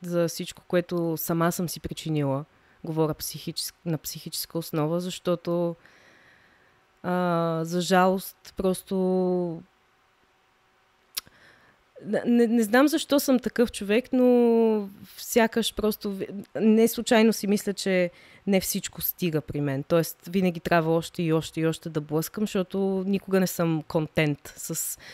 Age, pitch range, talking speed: 20-39, 170-205 Hz, 125 wpm